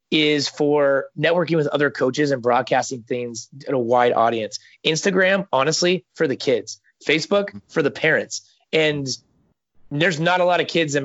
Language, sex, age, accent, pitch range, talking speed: English, male, 20-39, American, 140-170 Hz, 165 wpm